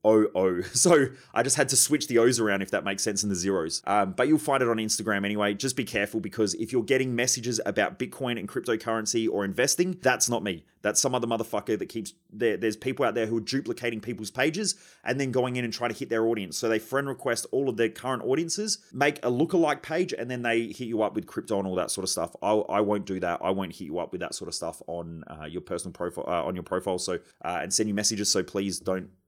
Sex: male